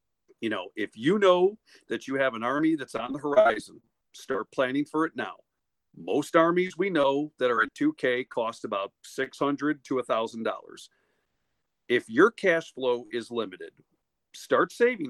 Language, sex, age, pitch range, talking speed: English, male, 50-69, 120-165 Hz, 165 wpm